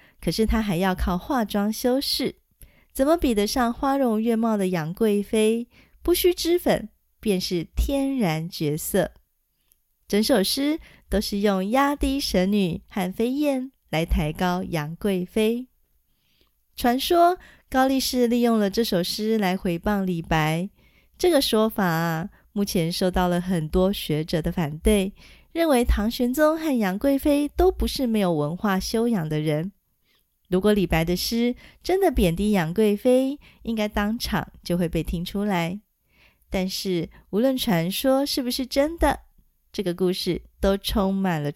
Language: Chinese